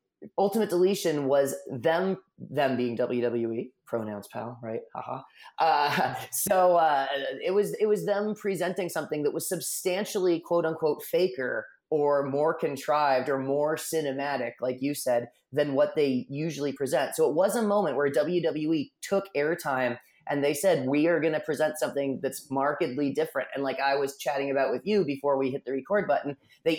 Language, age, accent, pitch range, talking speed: English, 30-49, American, 135-175 Hz, 175 wpm